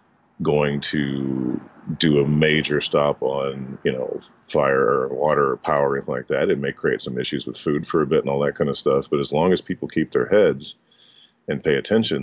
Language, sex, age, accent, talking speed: English, male, 40-59, American, 205 wpm